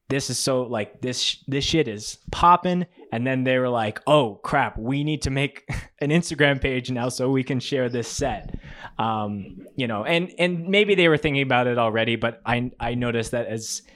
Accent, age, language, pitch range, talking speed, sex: American, 20-39, English, 110-135 Hz, 205 wpm, male